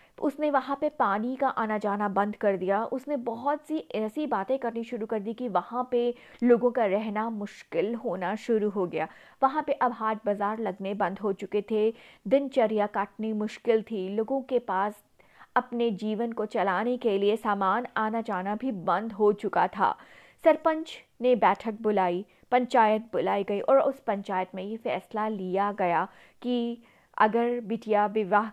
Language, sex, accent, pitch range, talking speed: Hindi, female, native, 200-245 Hz, 170 wpm